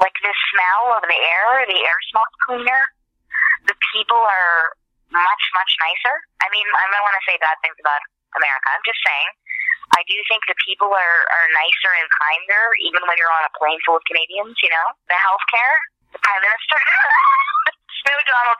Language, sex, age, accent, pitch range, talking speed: English, female, 20-39, American, 165-230 Hz, 185 wpm